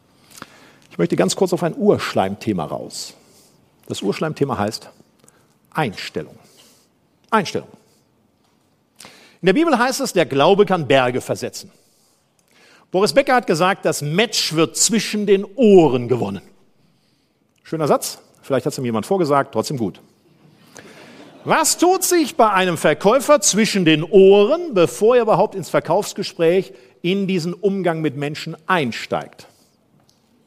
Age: 50-69